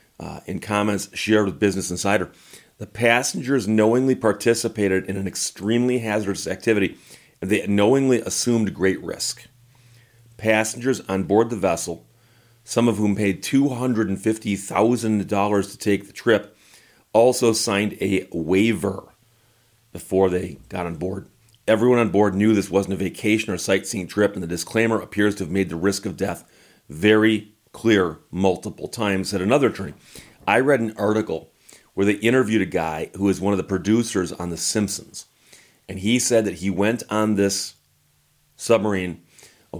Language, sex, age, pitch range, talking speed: English, male, 40-59, 95-115 Hz, 155 wpm